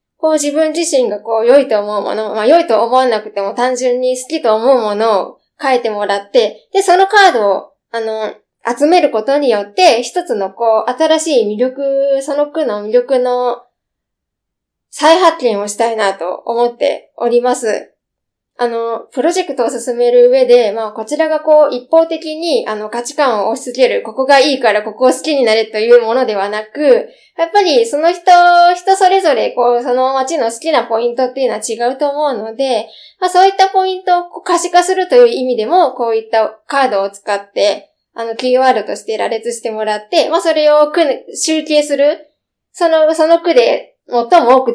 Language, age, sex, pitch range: Japanese, 20-39, female, 225-325 Hz